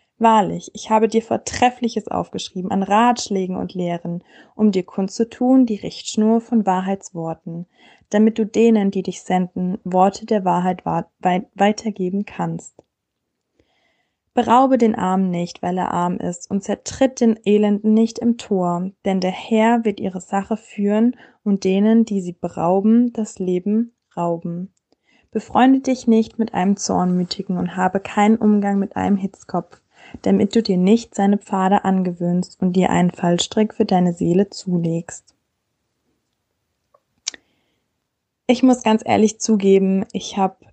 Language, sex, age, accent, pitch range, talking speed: German, female, 20-39, German, 185-220 Hz, 140 wpm